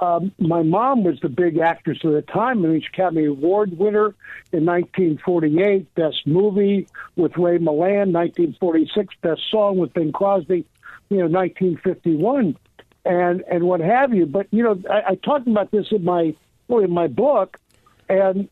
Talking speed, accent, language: 170 wpm, American, English